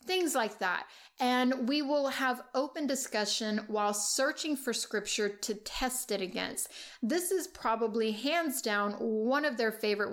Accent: American